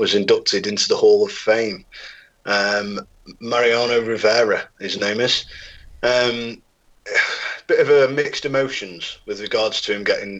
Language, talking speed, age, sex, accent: English, 145 wpm, 30-49, male, British